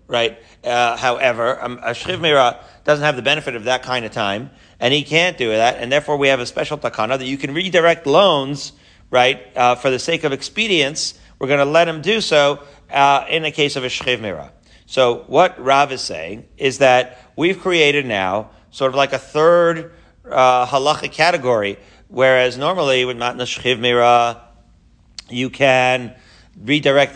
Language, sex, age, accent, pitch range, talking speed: English, male, 40-59, American, 125-155 Hz, 180 wpm